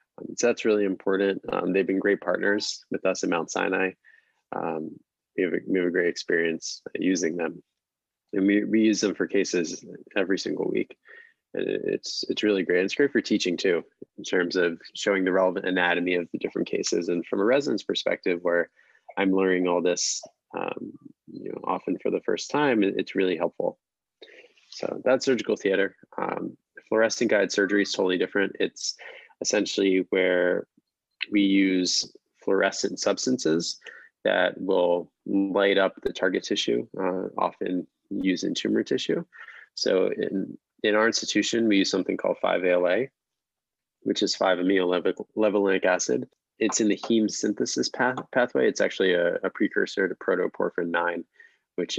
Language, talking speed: English, 160 wpm